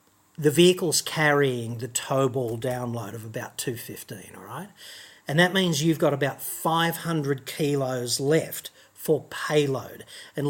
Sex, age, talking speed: male, 40-59, 135 wpm